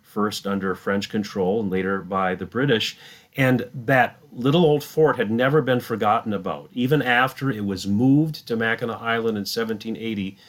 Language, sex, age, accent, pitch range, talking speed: English, male, 40-59, American, 100-125 Hz, 165 wpm